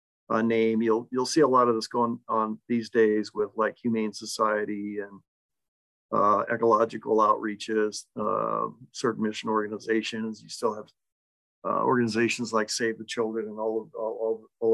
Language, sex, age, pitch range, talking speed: English, male, 50-69, 110-125 Hz, 145 wpm